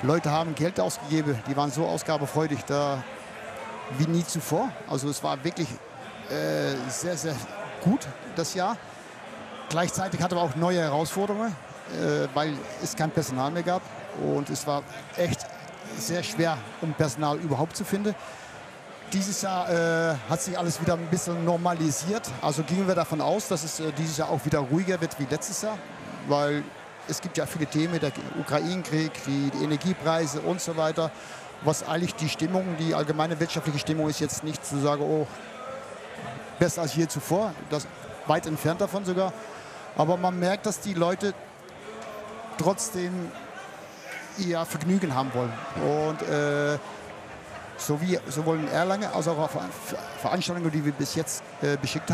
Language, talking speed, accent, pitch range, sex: German, 155 wpm, German, 150-175 Hz, male